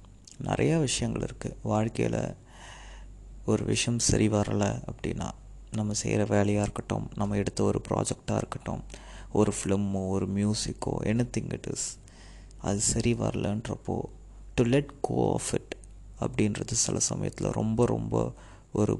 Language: Tamil